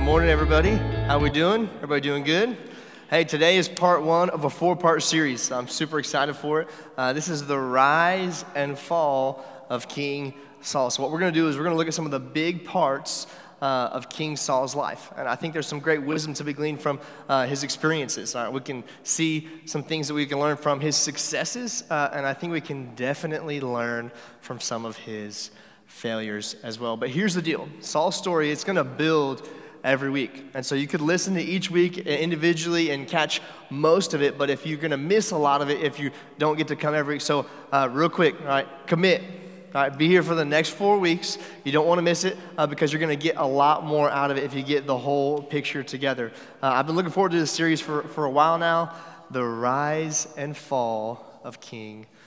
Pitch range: 135-160 Hz